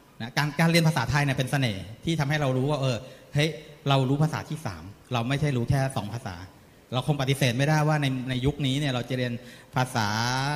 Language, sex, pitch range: Thai, male, 120-140 Hz